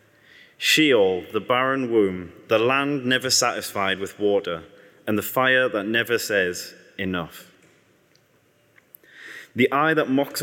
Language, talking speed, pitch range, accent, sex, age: English, 120 wpm, 105-135 Hz, British, male, 30-49